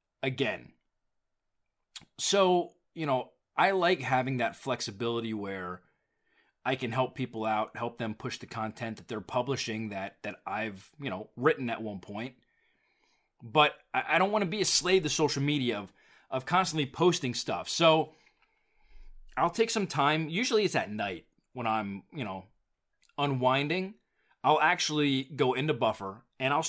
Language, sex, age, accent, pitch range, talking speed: English, male, 30-49, American, 115-160 Hz, 155 wpm